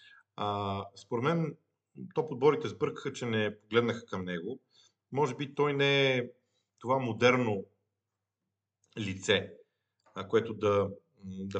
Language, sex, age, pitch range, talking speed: Bulgarian, male, 40-59, 105-140 Hz, 115 wpm